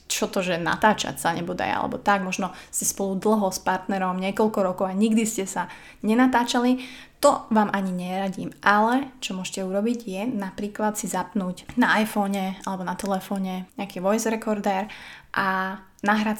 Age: 20-39